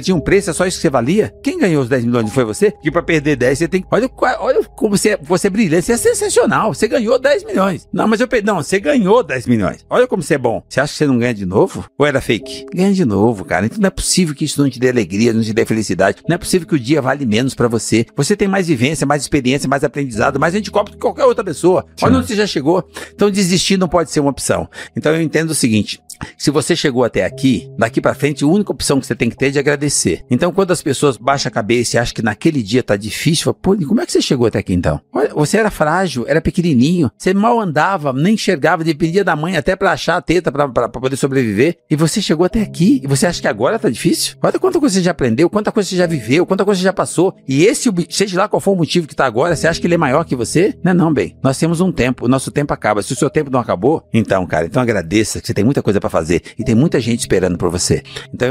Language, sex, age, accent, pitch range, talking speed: Portuguese, male, 60-79, Brazilian, 130-190 Hz, 275 wpm